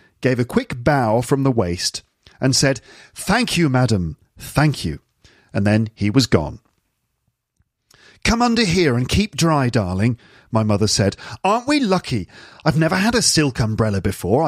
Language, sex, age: English, male, 40-59